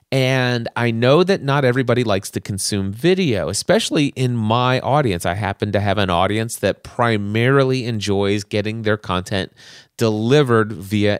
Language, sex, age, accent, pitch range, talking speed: English, male, 30-49, American, 105-130 Hz, 150 wpm